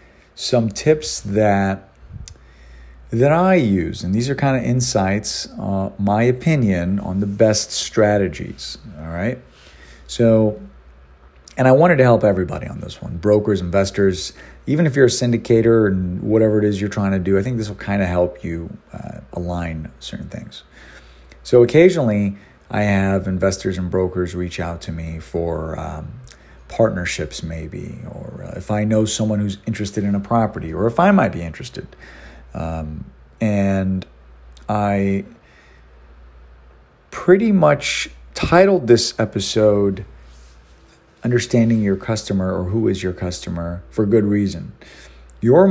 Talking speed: 145 wpm